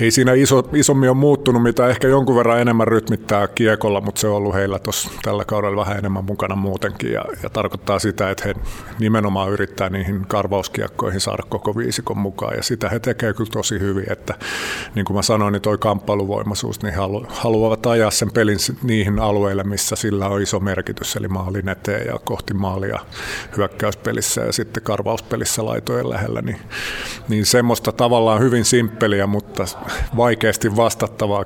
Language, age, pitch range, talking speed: Finnish, 50-69, 100-115 Hz, 165 wpm